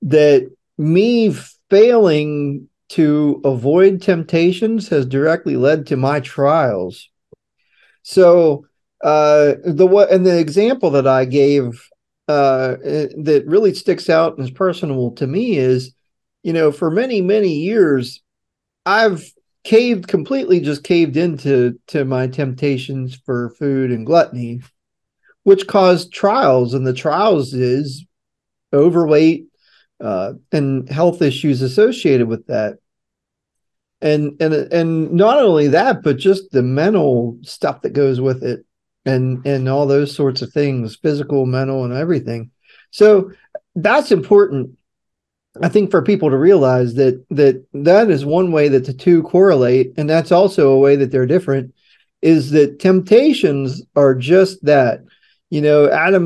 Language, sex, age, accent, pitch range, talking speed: English, male, 40-59, American, 135-180 Hz, 140 wpm